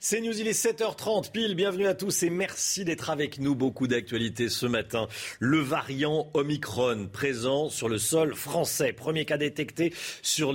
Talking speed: 170 wpm